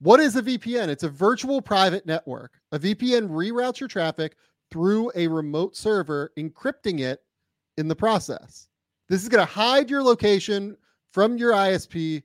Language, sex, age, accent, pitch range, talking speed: English, male, 30-49, American, 140-190 Hz, 160 wpm